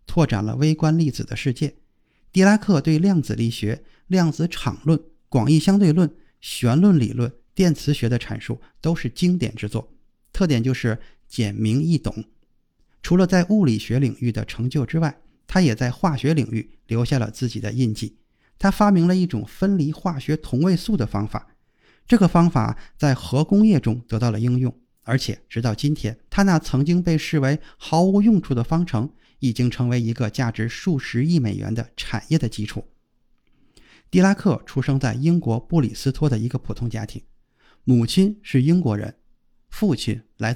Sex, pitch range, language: male, 115-165 Hz, Chinese